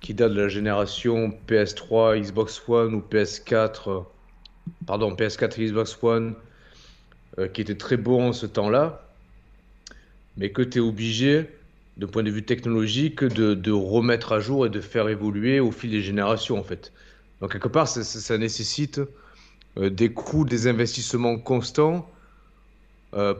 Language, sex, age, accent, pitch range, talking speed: French, male, 40-59, French, 110-135 Hz, 160 wpm